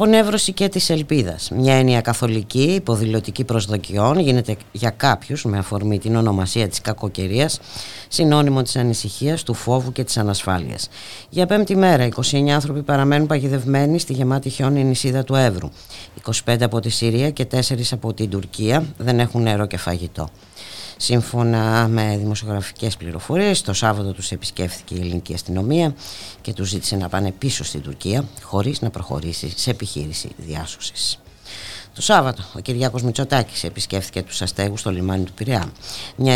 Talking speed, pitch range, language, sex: 150 wpm, 95-130 Hz, Greek, female